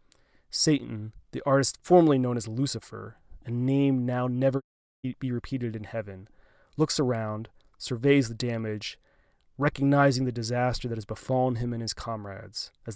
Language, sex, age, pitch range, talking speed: English, male, 20-39, 110-130 Hz, 145 wpm